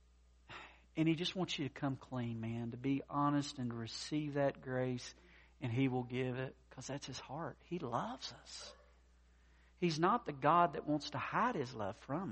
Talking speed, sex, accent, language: 190 wpm, male, American, English